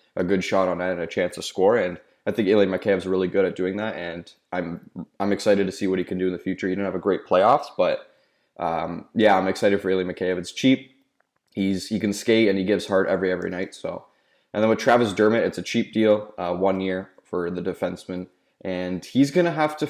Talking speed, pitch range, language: 245 wpm, 90-105 Hz, English